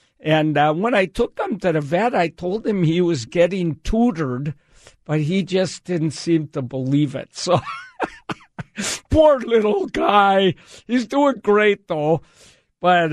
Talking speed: 150 wpm